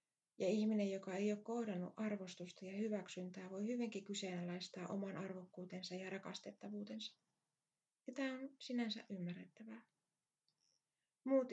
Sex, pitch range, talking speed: female, 180-220 Hz, 115 wpm